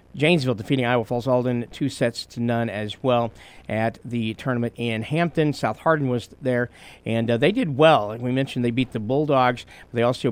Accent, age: American, 50-69